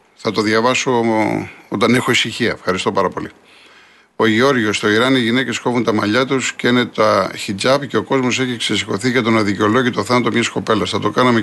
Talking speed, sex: 195 wpm, male